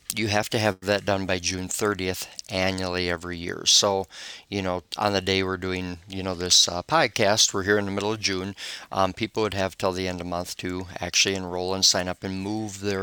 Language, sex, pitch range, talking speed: English, male, 90-105 Hz, 230 wpm